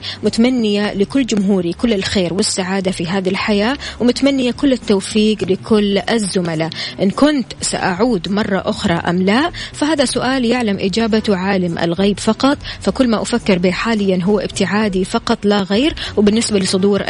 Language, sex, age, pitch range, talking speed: Arabic, female, 20-39, 185-225 Hz, 140 wpm